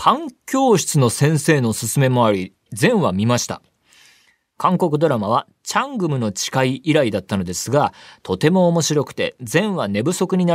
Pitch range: 110-170 Hz